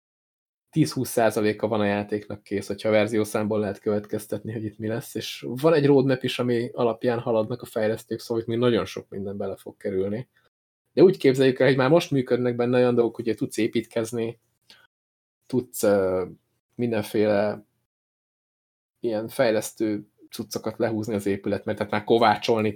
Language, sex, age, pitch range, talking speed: Hungarian, male, 20-39, 105-125 Hz, 160 wpm